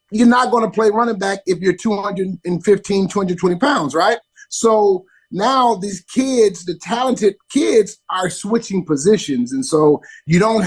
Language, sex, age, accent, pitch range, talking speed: English, male, 30-49, American, 165-210 Hz, 145 wpm